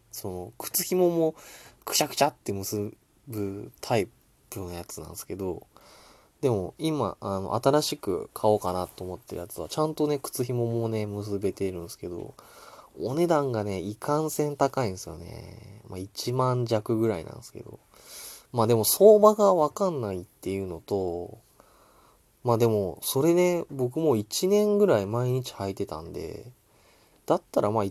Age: 20-39